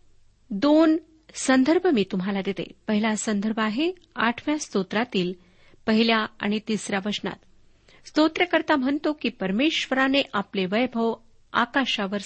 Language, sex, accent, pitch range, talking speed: Marathi, female, native, 200-275 Hz, 105 wpm